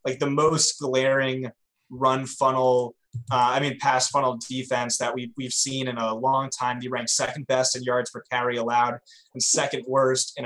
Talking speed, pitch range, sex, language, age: 190 wpm, 125-140 Hz, male, English, 20-39